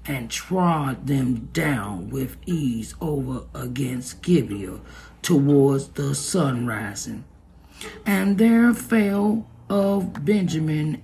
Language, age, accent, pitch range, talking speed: English, 50-69, American, 135-185 Hz, 100 wpm